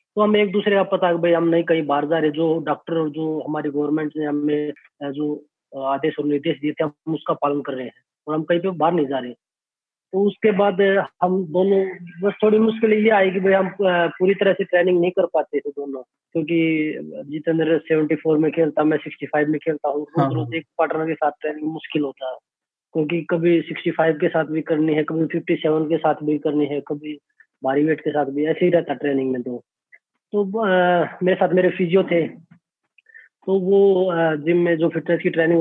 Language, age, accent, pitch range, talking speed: Hindi, 20-39, native, 145-170 Hz, 210 wpm